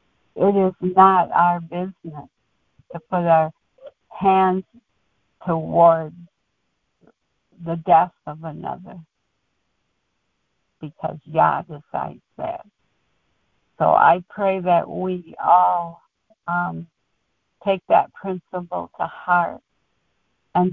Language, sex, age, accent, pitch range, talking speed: English, female, 60-79, American, 165-190 Hz, 90 wpm